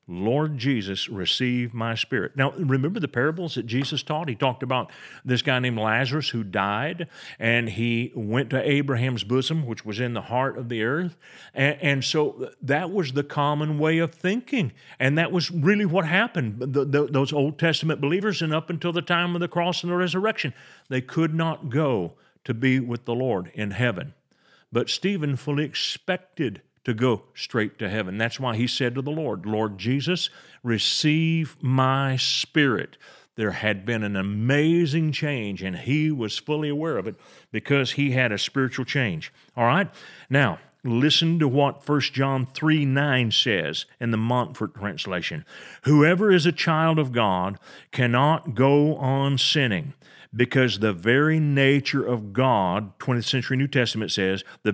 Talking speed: 170 wpm